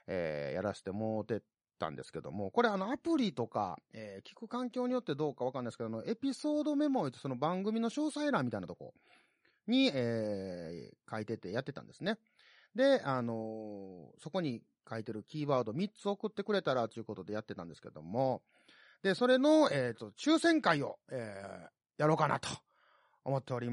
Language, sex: Japanese, male